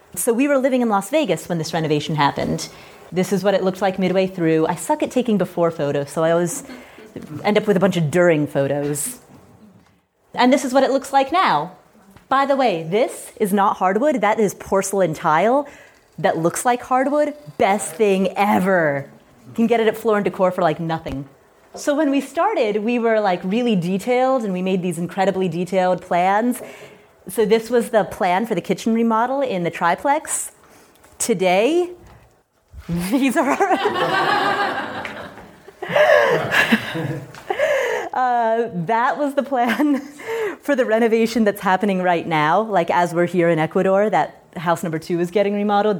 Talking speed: 170 wpm